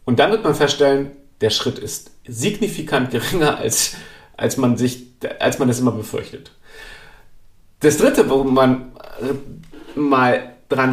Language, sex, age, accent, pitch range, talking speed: German, male, 40-59, German, 120-145 Hz, 135 wpm